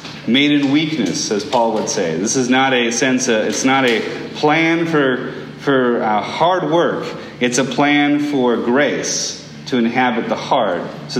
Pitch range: 105-135 Hz